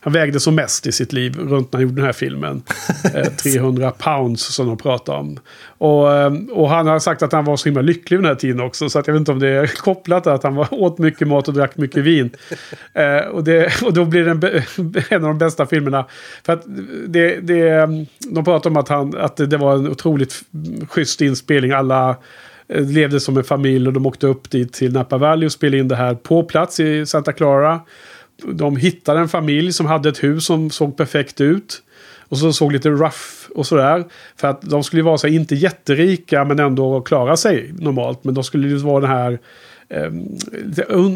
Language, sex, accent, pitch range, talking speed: Swedish, male, Norwegian, 135-160 Hz, 215 wpm